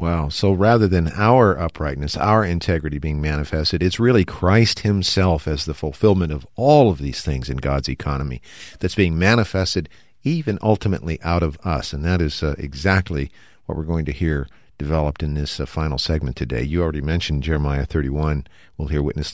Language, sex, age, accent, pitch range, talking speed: English, male, 50-69, American, 75-100 Hz, 180 wpm